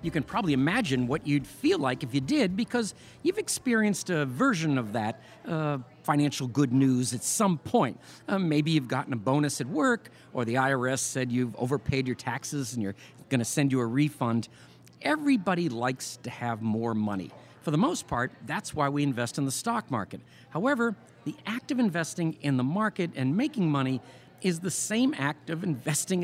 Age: 50-69